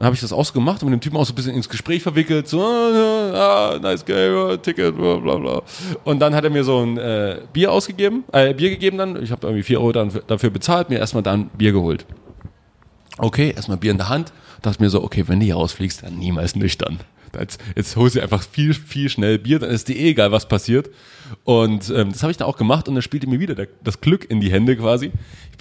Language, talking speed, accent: German, 255 wpm, German